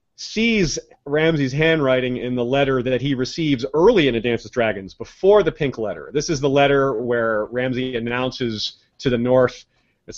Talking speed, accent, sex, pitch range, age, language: 175 wpm, American, male, 115-165 Hz, 30-49, English